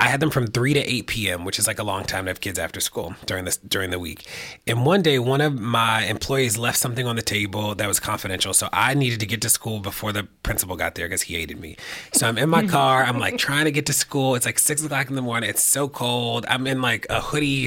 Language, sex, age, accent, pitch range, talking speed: English, male, 30-49, American, 105-140 Hz, 280 wpm